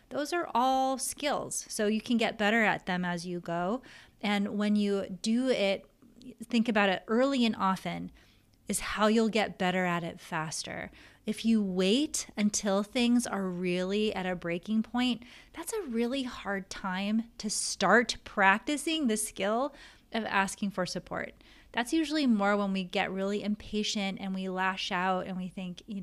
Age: 20-39